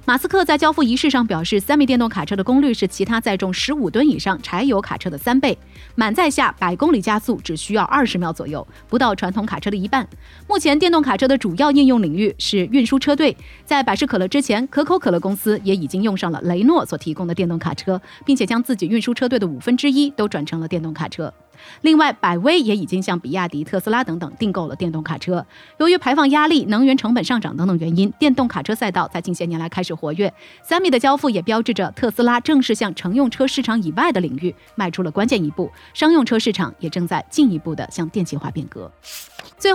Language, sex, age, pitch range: Chinese, female, 30-49, 185-270 Hz